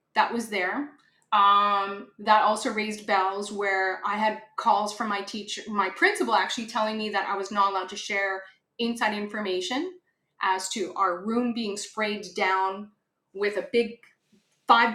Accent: American